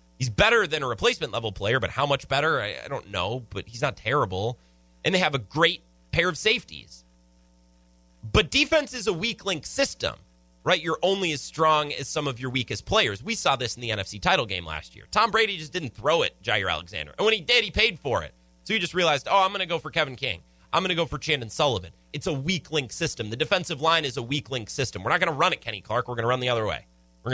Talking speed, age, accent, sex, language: 260 wpm, 30-49, American, male, English